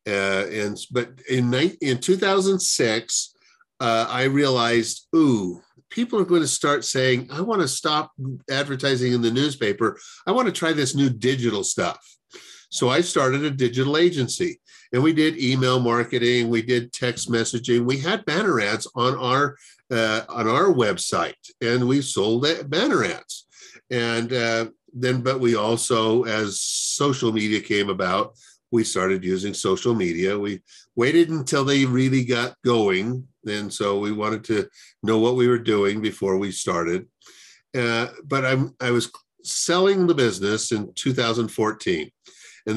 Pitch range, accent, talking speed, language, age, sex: 115-140 Hz, American, 155 wpm, English, 50-69, male